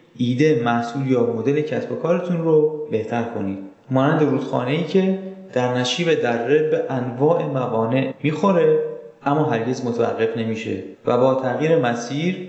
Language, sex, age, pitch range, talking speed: Persian, male, 30-49, 120-160 Hz, 130 wpm